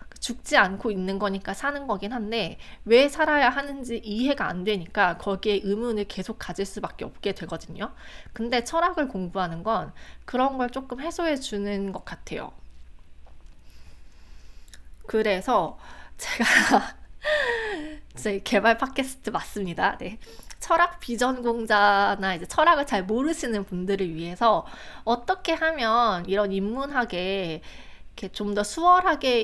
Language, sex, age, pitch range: Korean, female, 20-39, 195-260 Hz